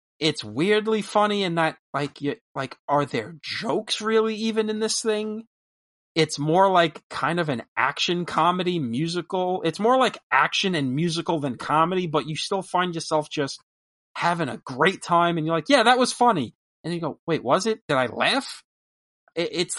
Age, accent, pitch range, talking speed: 30-49, American, 140-190 Hz, 180 wpm